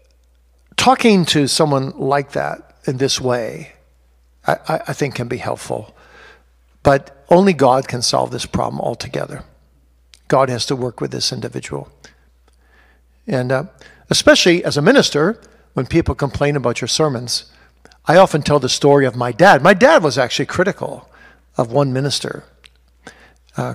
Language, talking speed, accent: English, 145 wpm, American